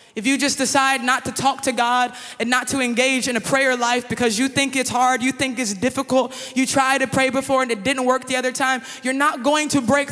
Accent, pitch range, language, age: American, 255-295 Hz, English, 20-39